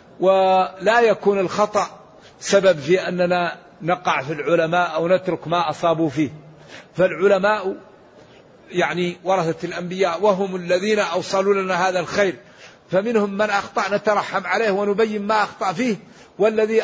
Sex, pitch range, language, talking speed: male, 170-205 Hz, Arabic, 120 wpm